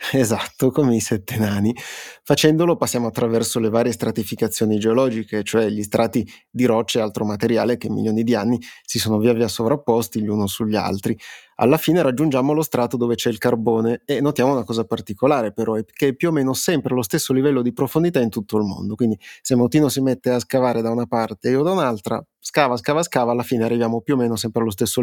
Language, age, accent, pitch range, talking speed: Italian, 30-49, native, 110-130 Hz, 215 wpm